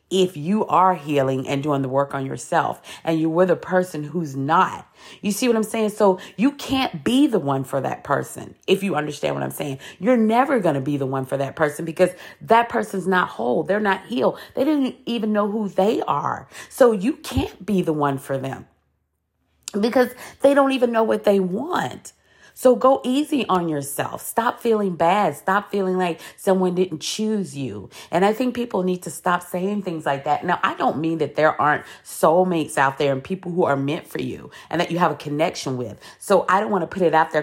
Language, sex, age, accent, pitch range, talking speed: English, female, 40-59, American, 150-210 Hz, 220 wpm